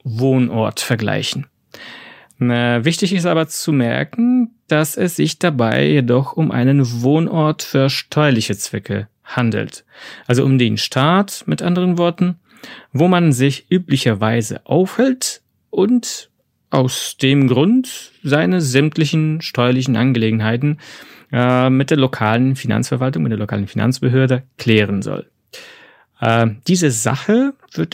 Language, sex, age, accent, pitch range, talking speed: German, male, 30-49, German, 115-160 Hz, 115 wpm